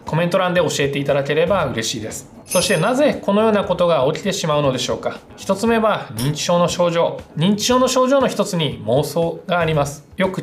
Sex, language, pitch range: male, Japanese, 145-200 Hz